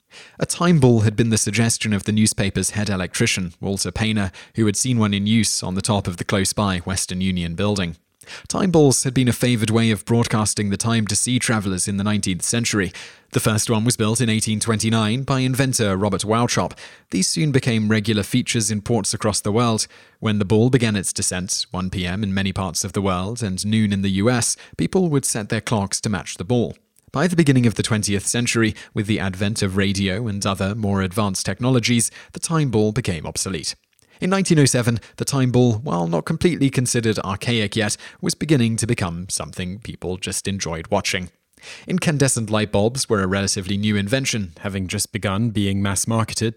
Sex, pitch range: male, 100-120 Hz